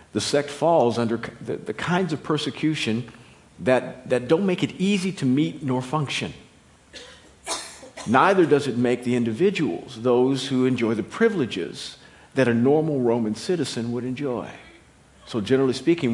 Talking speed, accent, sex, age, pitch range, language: 150 wpm, American, male, 50-69, 115-150 Hz, English